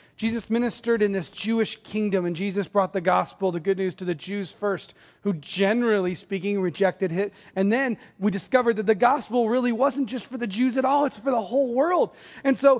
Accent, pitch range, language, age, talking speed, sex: American, 200-265 Hz, English, 40-59, 210 wpm, male